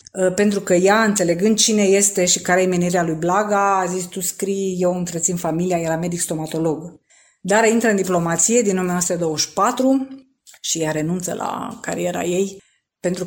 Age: 20-39